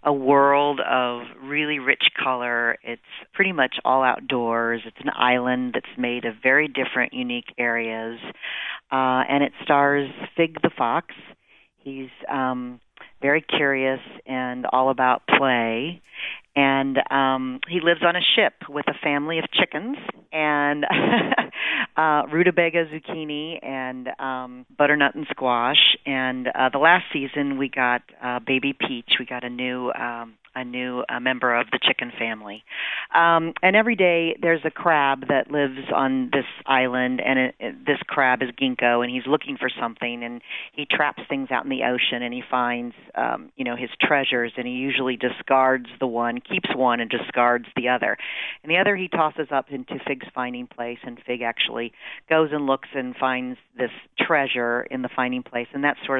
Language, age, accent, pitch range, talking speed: English, 40-59, American, 125-145 Hz, 170 wpm